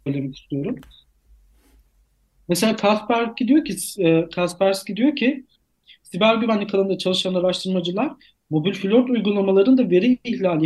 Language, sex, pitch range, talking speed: Turkish, male, 160-225 Hz, 105 wpm